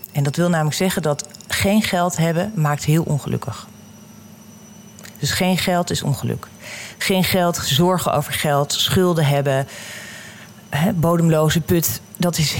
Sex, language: female, Dutch